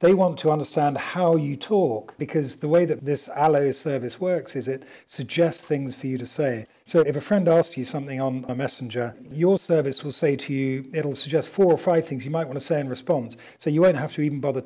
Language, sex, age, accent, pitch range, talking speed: English, male, 50-69, British, 130-160 Hz, 240 wpm